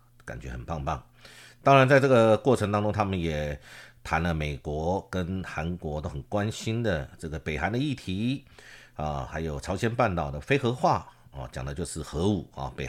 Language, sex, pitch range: Chinese, male, 75-120 Hz